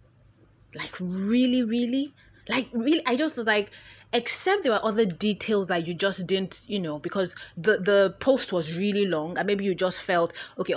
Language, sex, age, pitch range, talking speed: English, female, 30-49, 160-230 Hz, 180 wpm